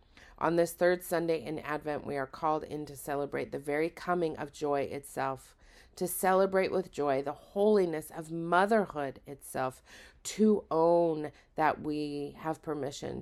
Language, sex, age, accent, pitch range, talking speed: English, female, 40-59, American, 140-170 Hz, 150 wpm